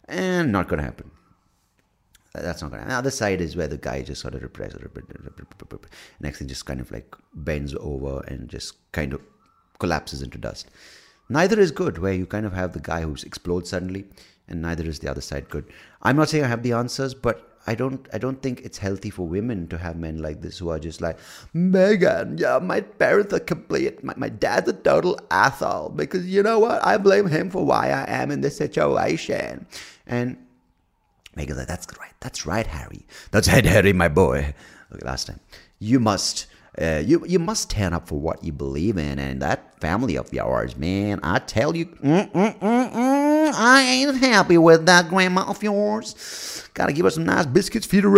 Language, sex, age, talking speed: English, male, 30-49, 215 wpm